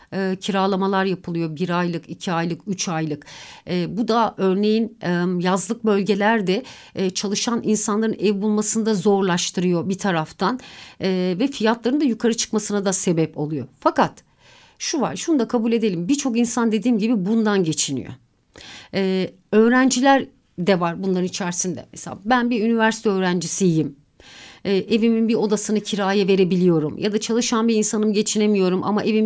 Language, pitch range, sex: Turkish, 185-240 Hz, female